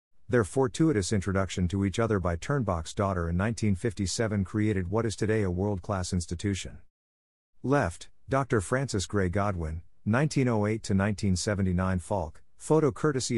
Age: 50-69